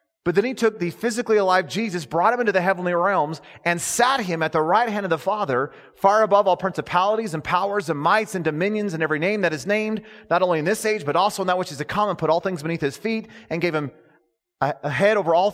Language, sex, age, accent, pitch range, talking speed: English, male, 30-49, American, 175-255 Hz, 260 wpm